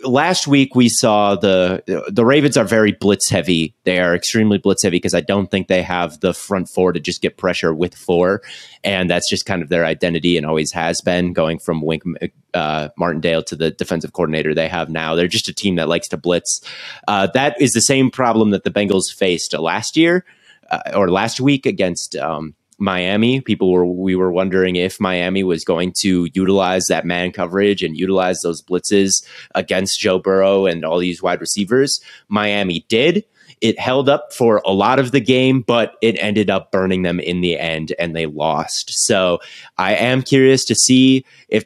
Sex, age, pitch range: male, 30-49, 90-115 Hz